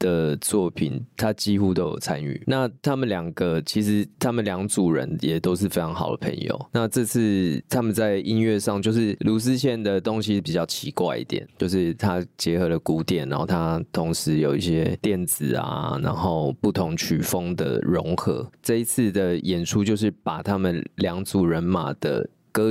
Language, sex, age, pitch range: Chinese, male, 20-39, 90-110 Hz